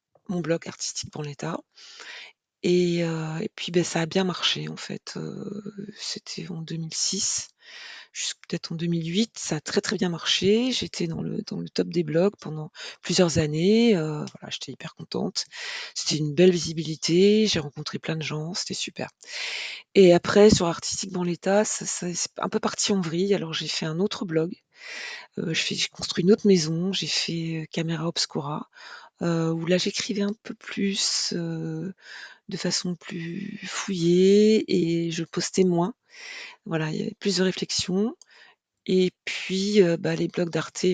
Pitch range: 165-205 Hz